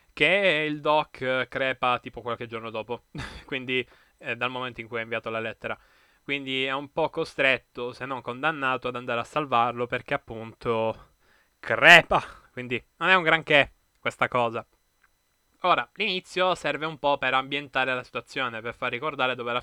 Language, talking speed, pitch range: Italian, 165 wpm, 120-140 Hz